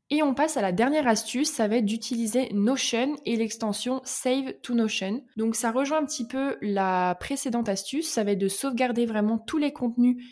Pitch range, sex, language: 205-245 Hz, female, French